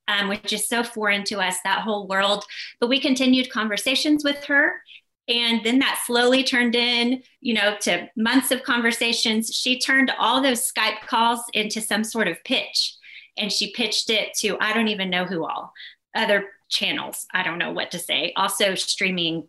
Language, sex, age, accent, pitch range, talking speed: English, female, 30-49, American, 205-245 Hz, 185 wpm